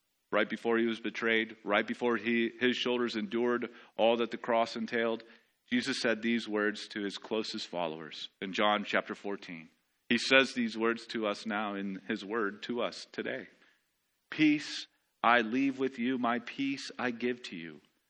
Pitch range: 105-135 Hz